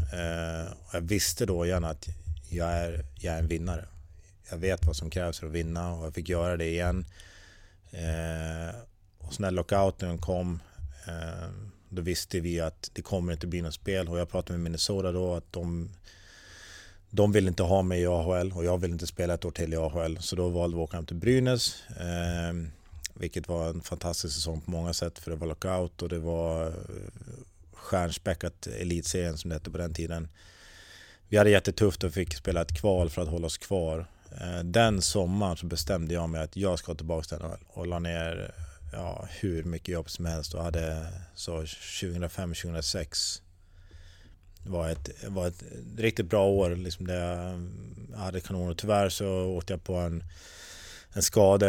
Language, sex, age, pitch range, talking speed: Swedish, male, 30-49, 85-95 Hz, 180 wpm